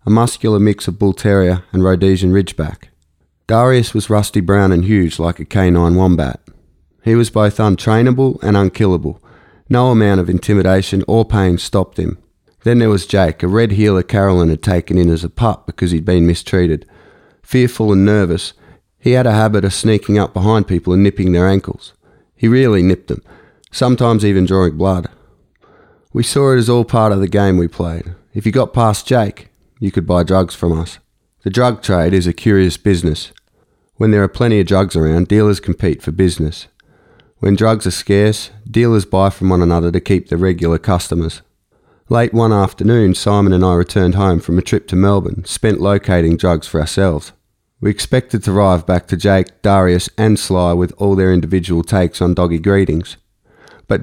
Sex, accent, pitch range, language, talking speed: male, Australian, 90-105 Hz, English, 185 wpm